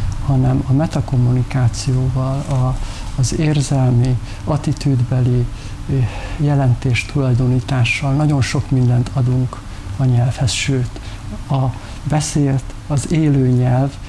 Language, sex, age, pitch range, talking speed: Hungarian, male, 60-79, 120-140 Hz, 80 wpm